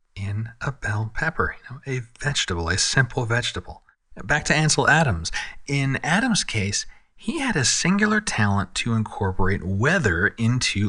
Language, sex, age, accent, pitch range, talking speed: English, male, 40-59, American, 105-145 Hz, 140 wpm